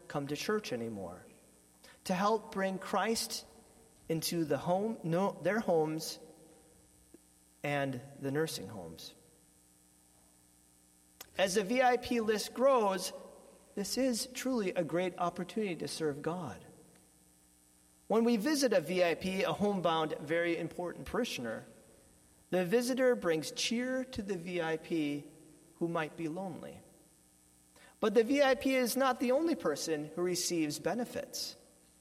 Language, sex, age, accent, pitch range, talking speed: English, male, 40-59, American, 145-215 Hz, 120 wpm